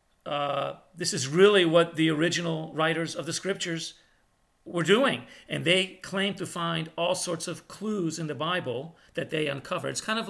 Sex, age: male, 50-69